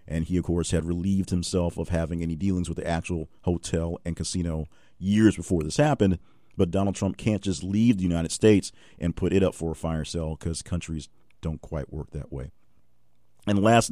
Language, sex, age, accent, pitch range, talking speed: English, male, 50-69, American, 85-110 Hz, 205 wpm